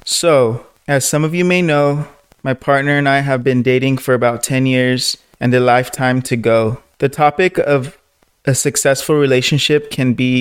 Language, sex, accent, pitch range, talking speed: English, male, American, 125-145 Hz, 180 wpm